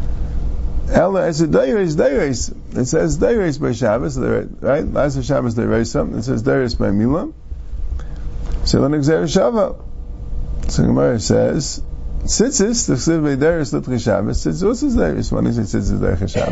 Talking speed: 70 wpm